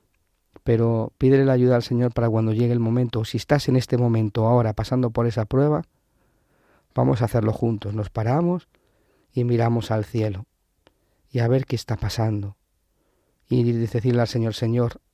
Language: Spanish